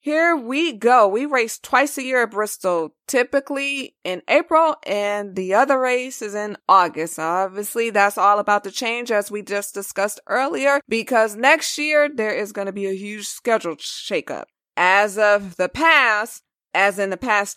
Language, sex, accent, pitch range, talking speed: English, female, American, 205-265 Hz, 175 wpm